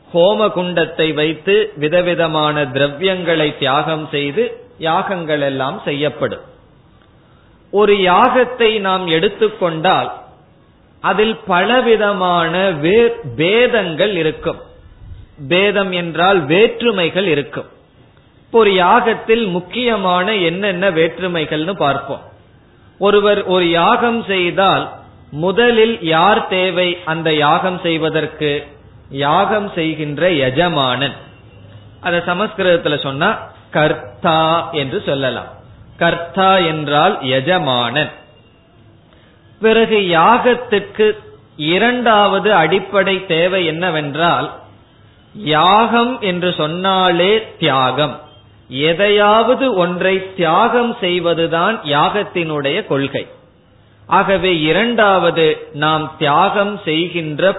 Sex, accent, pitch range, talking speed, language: male, native, 150-205 Hz, 65 wpm, Tamil